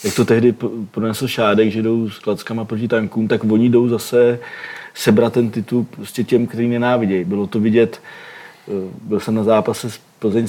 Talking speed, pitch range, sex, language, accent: 175 wpm, 105-115 Hz, male, Czech, native